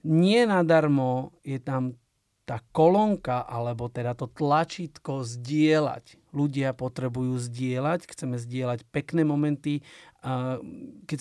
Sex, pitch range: male, 135-155 Hz